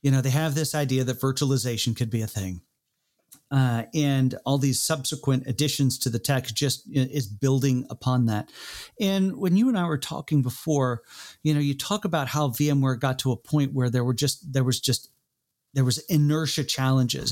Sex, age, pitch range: male, 40-59, 130-150 Hz